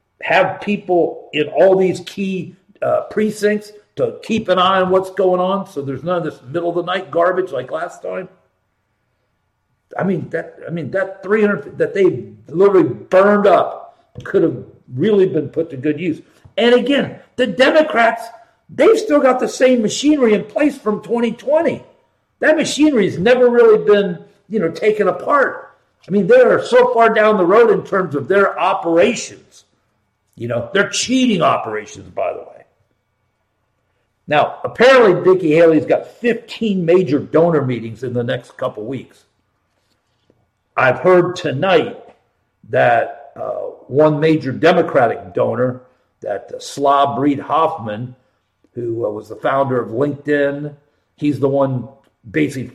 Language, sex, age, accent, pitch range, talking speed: English, male, 50-69, American, 130-210 Hz, 155 wpm